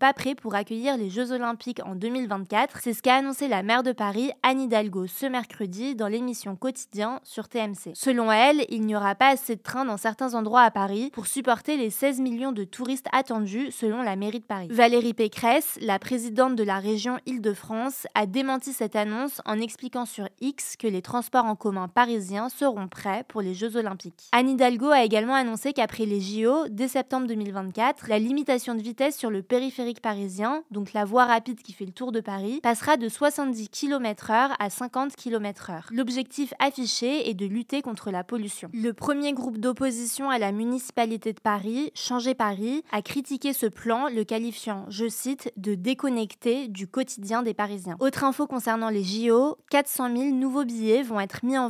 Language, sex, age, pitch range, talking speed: French, female, 20-39, 215-260 Hz, 190 wpm